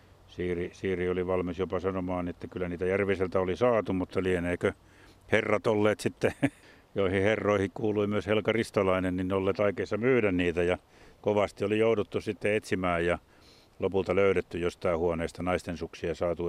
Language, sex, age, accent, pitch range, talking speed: Finnish, male, 60-79, native, 90-110 Hz, 155 wpm